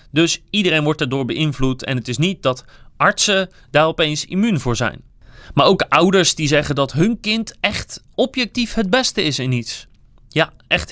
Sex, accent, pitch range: male, Dutch, 135-190 Hz